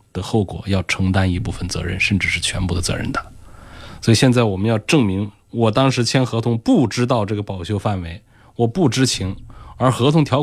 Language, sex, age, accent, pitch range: Chinese, male, 20-39, native, 95-120 Hz